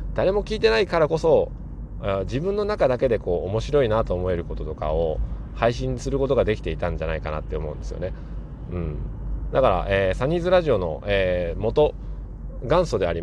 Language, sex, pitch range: Japanese, male, 90-135 Hz